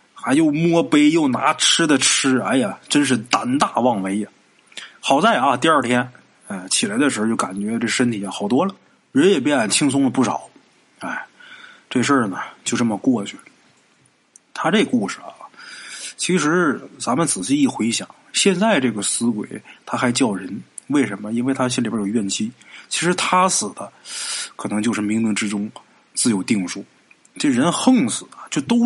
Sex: male